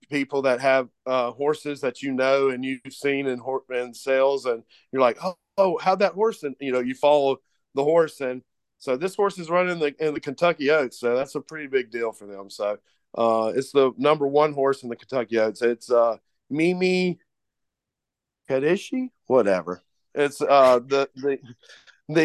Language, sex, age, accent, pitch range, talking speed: English, male, 40-59, American, 125-165 Hz, 185 wpm